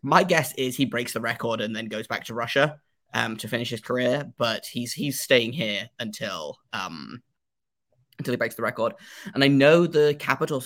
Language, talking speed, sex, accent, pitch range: English, 195 wpm, male, British, 115-145 Hz